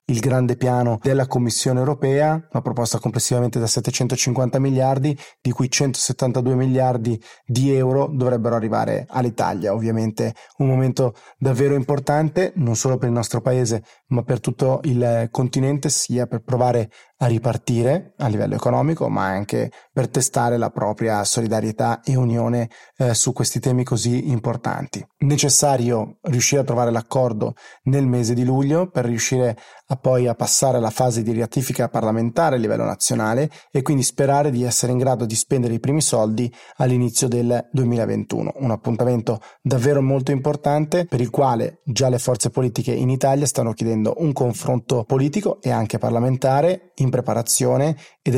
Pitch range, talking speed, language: 120-135 Hz, 155 wpm, Italian